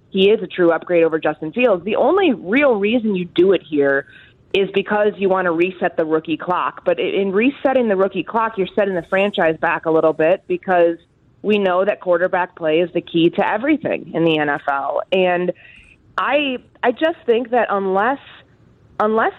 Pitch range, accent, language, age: 160-210 Hz, American, English, 20-39